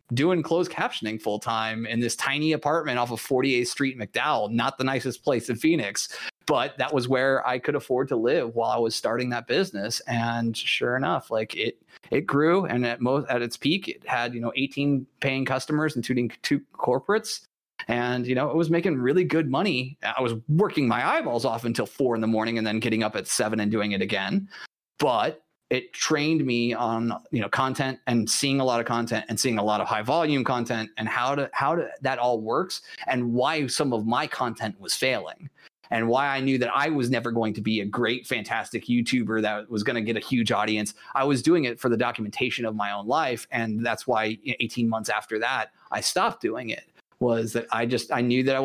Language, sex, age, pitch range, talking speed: English, male, 30-49, 115-135 Hz, 220 wpm